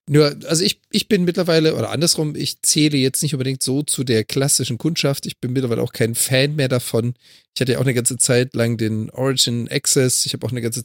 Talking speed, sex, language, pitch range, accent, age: 230 wpm, male, German, 125-155 Hz, German, 40-59